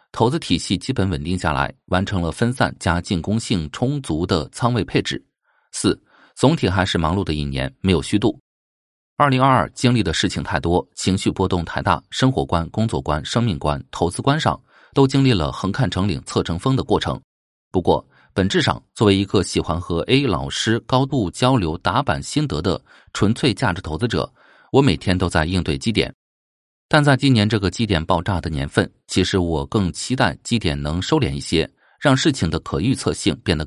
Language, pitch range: Chinese, 80-120 Hz